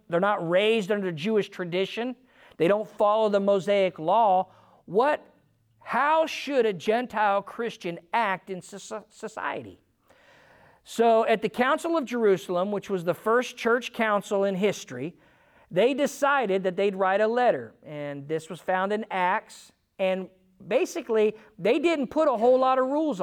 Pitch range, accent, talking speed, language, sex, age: 160-230 Hz, American, 150 wpm, English, male, 50-69